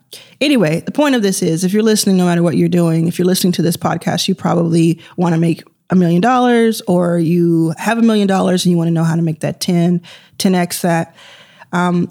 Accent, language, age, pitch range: American, English, 20-39, 170-210 Hz